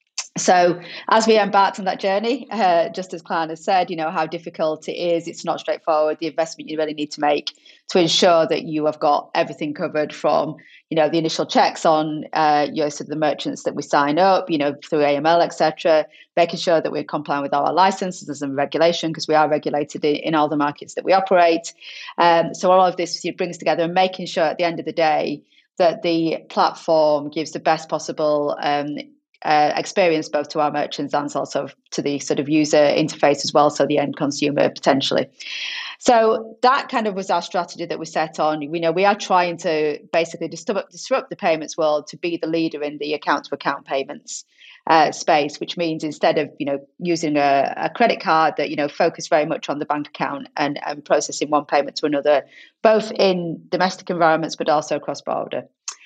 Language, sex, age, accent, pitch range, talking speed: English, female, 30-49, British, 150-180 Hz, 210 wpm